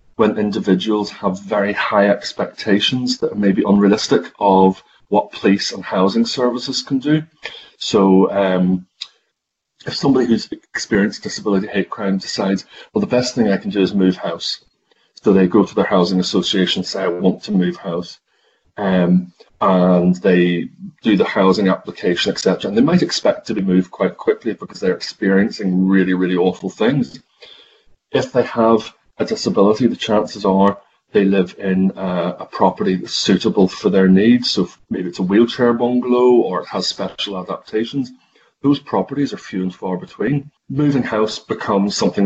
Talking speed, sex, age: 165 wpm, male, 30-49